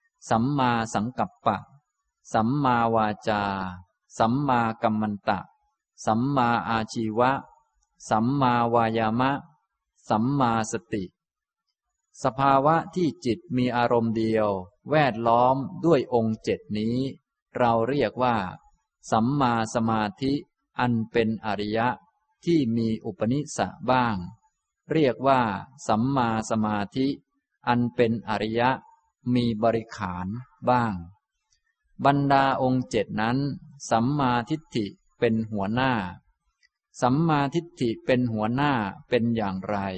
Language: Thai